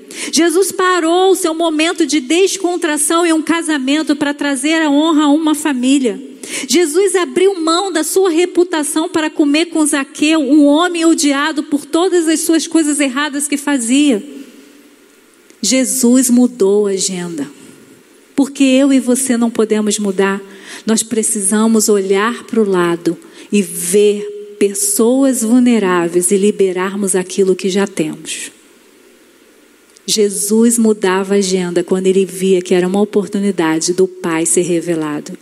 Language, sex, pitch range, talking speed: Portuguese, female, 215-335 Hz, 135 wpm